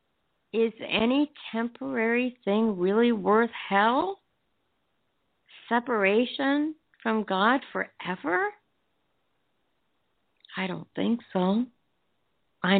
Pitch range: 175-230 Hz